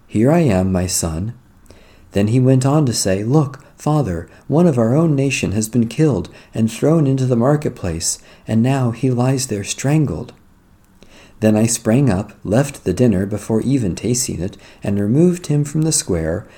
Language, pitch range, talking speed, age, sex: English, 95-125 Hz, 175 wpm, 50-69, male